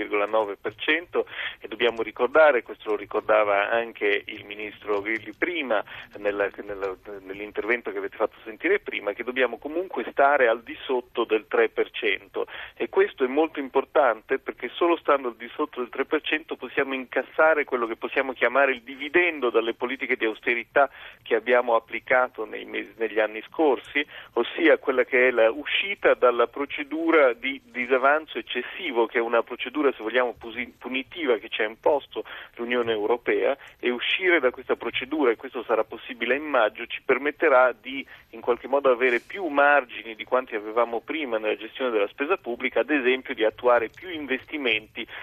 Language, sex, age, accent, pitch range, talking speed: Italian, male, 40-59, native, 115-150 Hz, 155 wpm